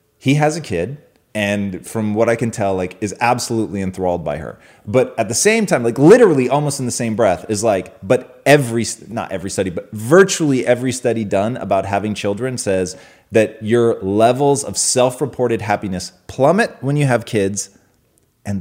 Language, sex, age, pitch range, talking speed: English, male, 30-49, 100-130 Hz, 180 wpm